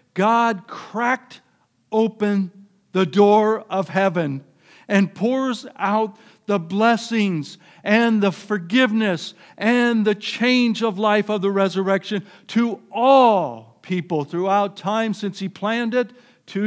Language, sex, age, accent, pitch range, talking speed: English, male, 60-79, American, 145-205 Hz, 120 wpm